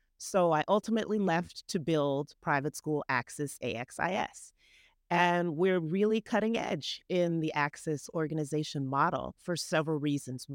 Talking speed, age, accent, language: 130 wpm, 40-59, American, English